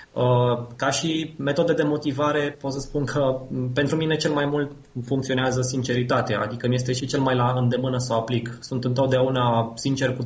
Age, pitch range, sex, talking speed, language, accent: 20-39, 125-145 Hz, male, 180 wpm, Romanian, native